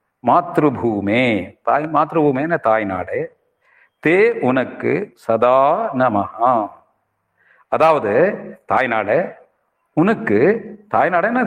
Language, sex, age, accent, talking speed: Tamil, male, 60-79, native, 70 wpm